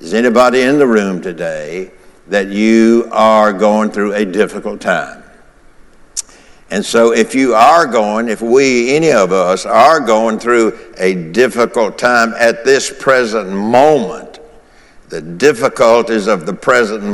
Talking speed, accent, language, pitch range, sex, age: 140 wpm, American, English, 100-115 Hz, male, 60-79